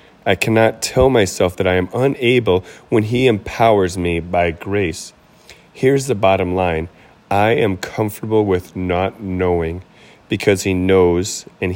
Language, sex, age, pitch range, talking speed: English, male, 30-49, 90-105 Hz, 145 wpm